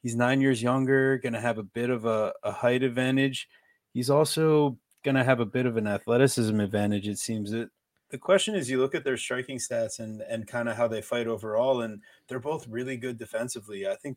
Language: English